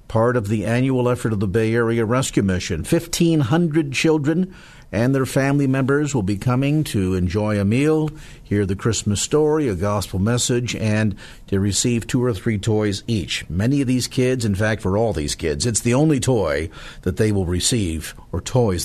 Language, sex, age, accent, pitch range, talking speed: English, male, 50-69, American, 105-140 Hz, 190 wpm